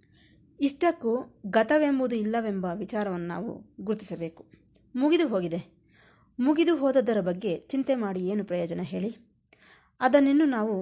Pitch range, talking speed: 185-240 Hz, 100 wpm